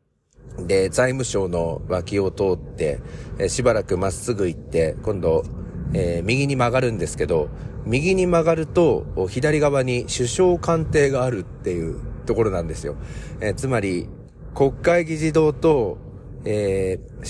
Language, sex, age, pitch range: Japanese, male, 40-59, 100-150 Hz